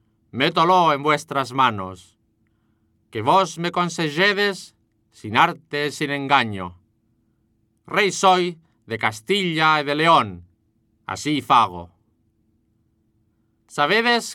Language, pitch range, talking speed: English, 110-165 Hz, 90 wpm